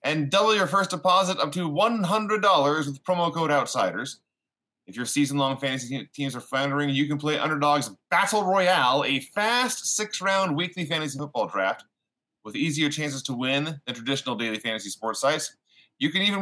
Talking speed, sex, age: 170 wpm, male, 30-49